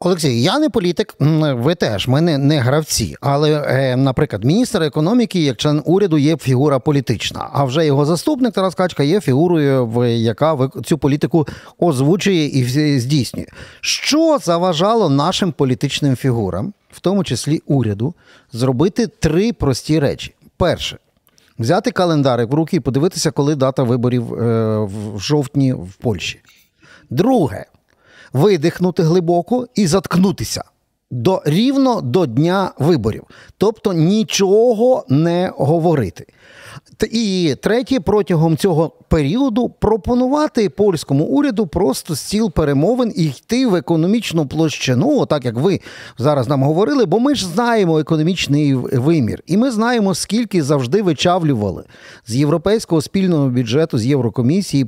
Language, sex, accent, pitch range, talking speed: Ukrainian, male, native, 135-195 Hz, 125 wpm